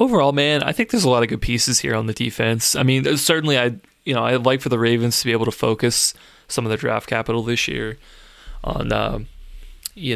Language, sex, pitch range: English, male, 115-130 Hz